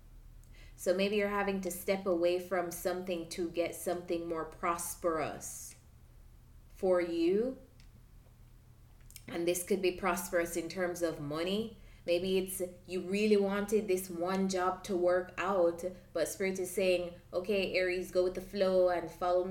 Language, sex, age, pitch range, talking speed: English, female, 20-39, 170-195 Hz, 150 wpm